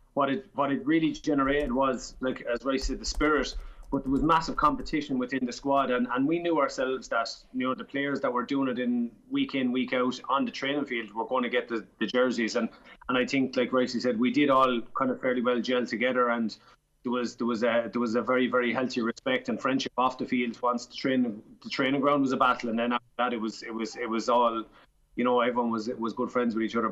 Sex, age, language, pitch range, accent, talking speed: male, 20-39, English, 120-140 Hz, Irish, 255 wpm